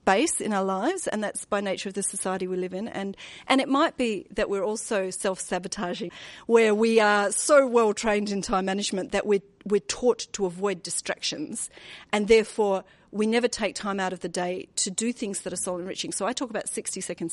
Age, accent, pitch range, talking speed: 40-59, Australian, 190-230 Hz, 215 wpm